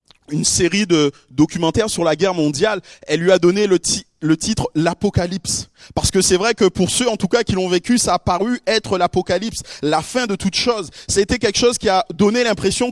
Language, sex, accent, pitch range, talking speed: French, male, French, 155-200 Hz, 230 wpm